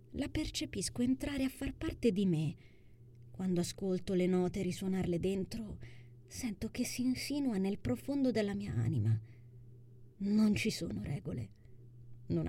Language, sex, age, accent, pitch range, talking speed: Italian, female, 30-49, native, 120-195 Hz, 135 wpm